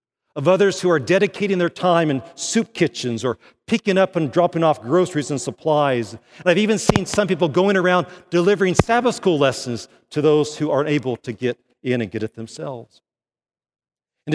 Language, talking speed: English, 185 wpm